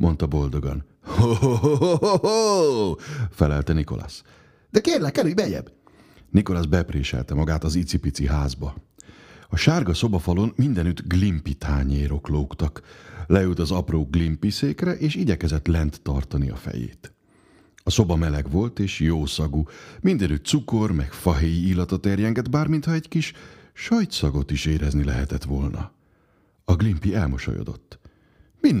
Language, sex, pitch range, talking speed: Hungarian, male, 80-115 Hz, 125 wpm